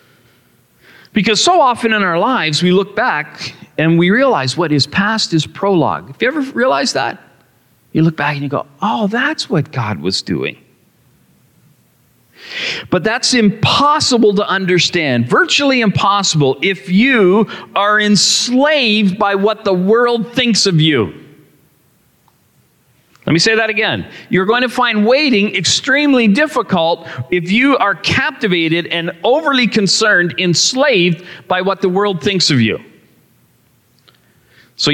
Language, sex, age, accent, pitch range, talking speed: English, male, 40-59, American, 165-235 Hz, 135 wpm